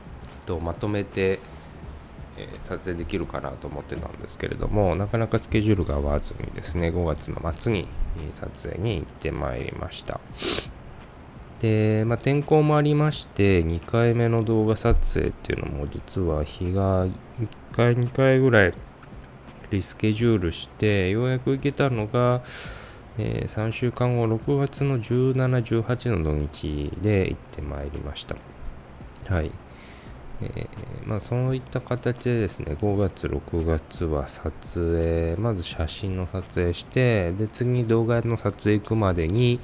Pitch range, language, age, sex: 75-115 Hz, Japanese, 20-39, male